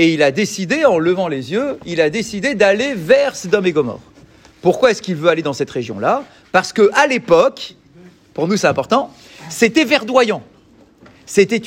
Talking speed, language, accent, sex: 175 wpm, French, French, male